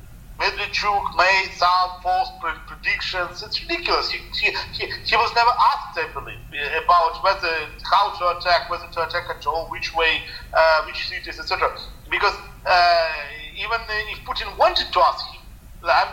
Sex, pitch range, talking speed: male, 160-220 Hz, 155 wpm